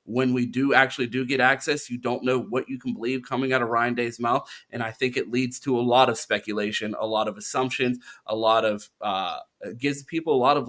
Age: 30-49